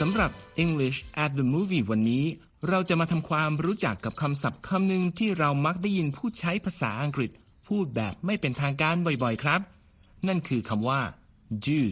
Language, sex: Thai, male